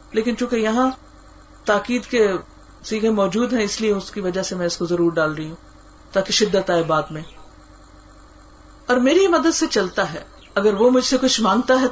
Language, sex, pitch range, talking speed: Urdu, female, 195-260 Hz, 195 wpm